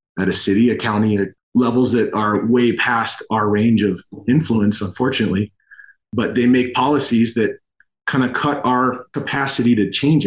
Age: 30-49